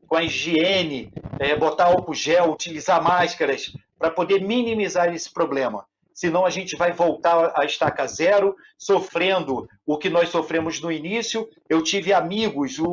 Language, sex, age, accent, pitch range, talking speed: Portuguese, male, 50-69, Brazilian, 160-200 Hz, 145 wpm